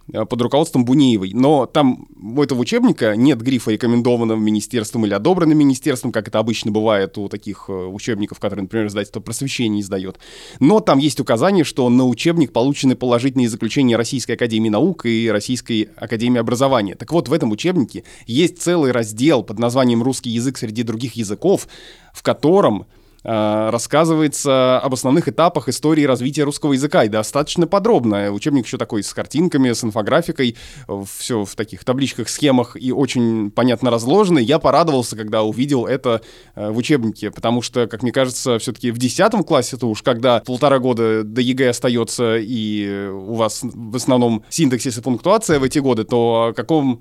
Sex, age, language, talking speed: male, 20-39, Russian, 160 wpm